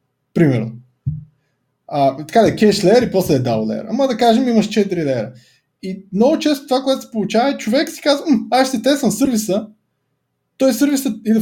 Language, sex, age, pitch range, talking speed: Bulgarian, male, 20-39, 170-250 Hz, 185 wpm